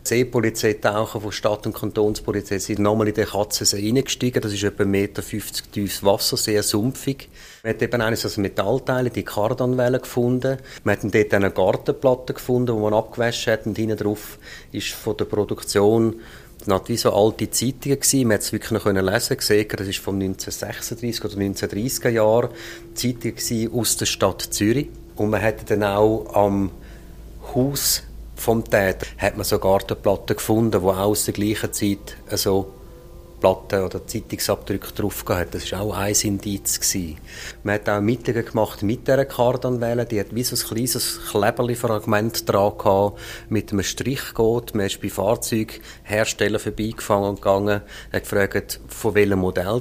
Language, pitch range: German, 105-120 Hz